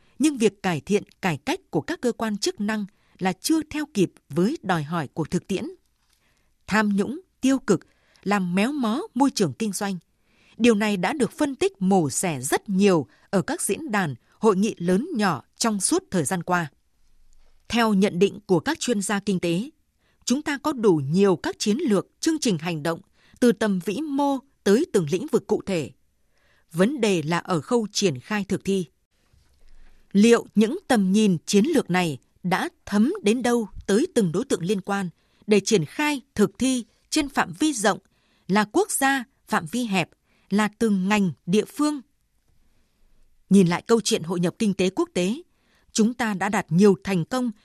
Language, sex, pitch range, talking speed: Vietnamese, female, 180-230 Hz, 190 wpm